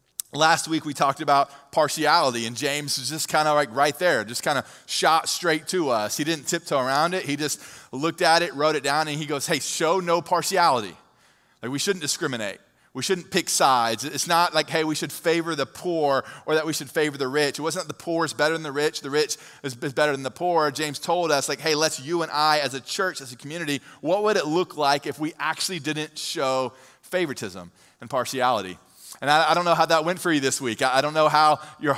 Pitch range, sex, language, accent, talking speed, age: 135-160 Hz, male, English, American, 235 wpm, 20-39